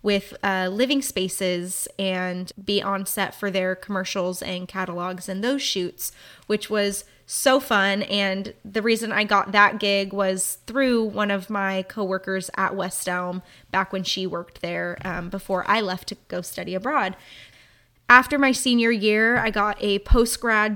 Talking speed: 165 wpm